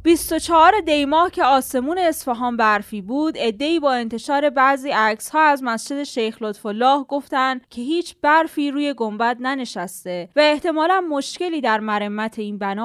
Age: 10-29